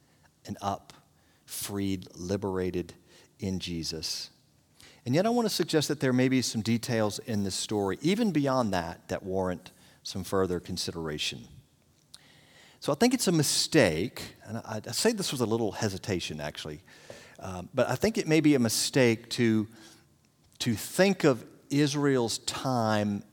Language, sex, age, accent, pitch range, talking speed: English, male, 50-69, American, 100-135 Hz, 155 wpm